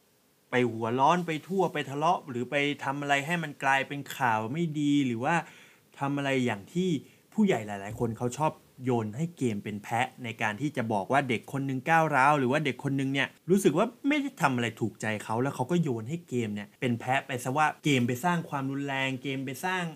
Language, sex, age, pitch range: Thai, male, 20-39, 115-150 Hz